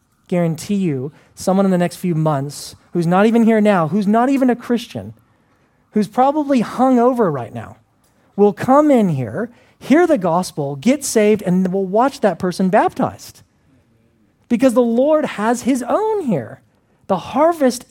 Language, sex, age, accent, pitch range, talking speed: English, male, 40-59, American, 140-215 Hz, 160 wpm